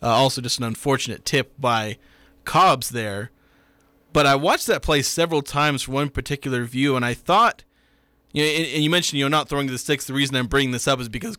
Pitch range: 120-145 Hz